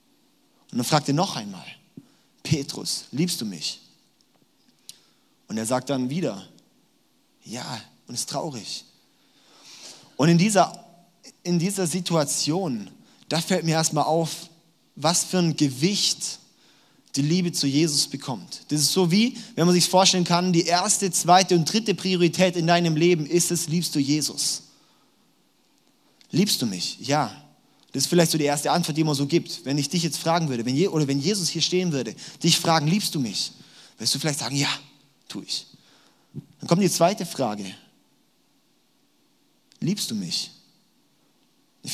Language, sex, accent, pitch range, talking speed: German, male, German, 145-180 Hz, 155 wpm